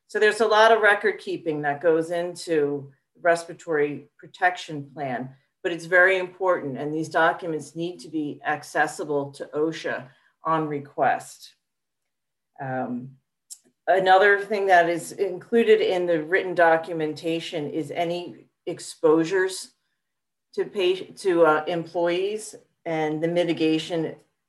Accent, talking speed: American, 125 wpm